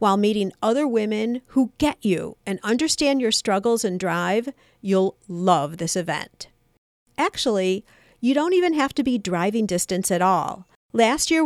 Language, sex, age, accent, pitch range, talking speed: English, female, 50-69, American, 185-250 Hz, 155 wpm